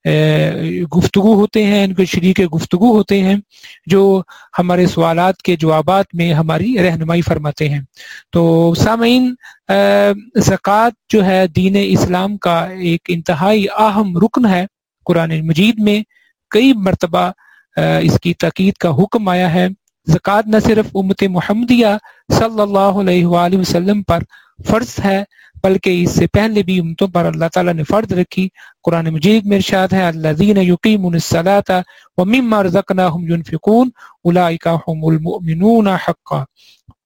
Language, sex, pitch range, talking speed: English, male, 175-210 Hz, 125 wpm